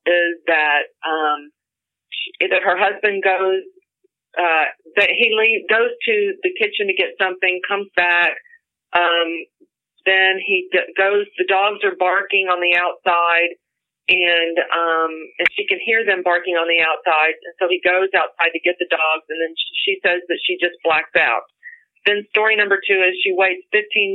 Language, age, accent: English, 40-59, American